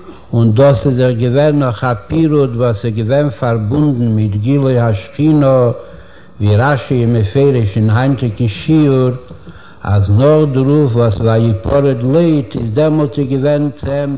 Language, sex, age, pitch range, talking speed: Hebrew, male, 60-79, 115-145 Hz, 155 wpm